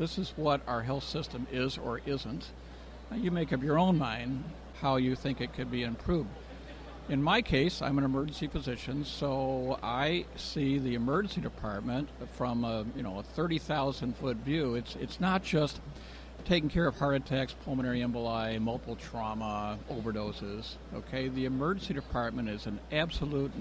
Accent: American